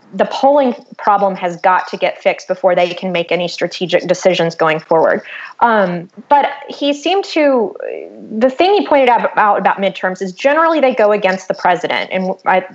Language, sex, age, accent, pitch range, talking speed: English, female, 20-39, American, 190-250 Hz, 180 wpm